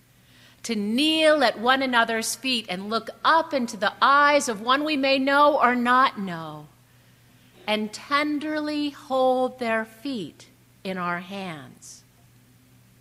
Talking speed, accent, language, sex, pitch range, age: 130 wpm, American, English, female, 190-290 Hz, 50-69